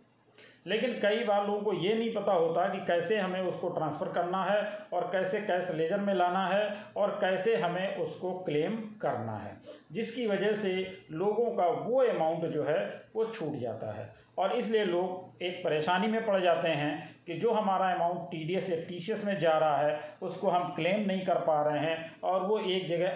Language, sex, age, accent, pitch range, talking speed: Hindi, male, 40-59, native, 160-200 Hz, 200 wpm